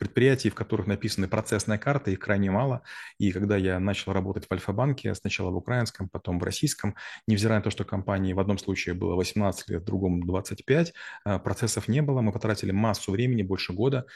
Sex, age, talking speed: male, 30-49, 185 wpm